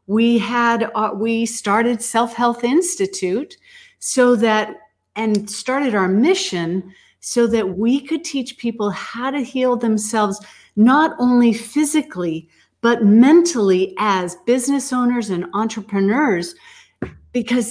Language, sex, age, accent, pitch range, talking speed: English, female, 50-69, American, 195-250 Hz, 120 wpm